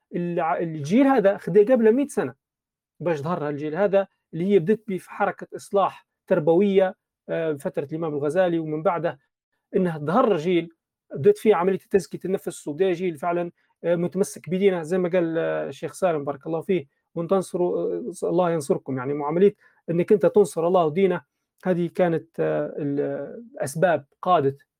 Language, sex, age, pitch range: Arabic, male, 40-59, 155-200 Hz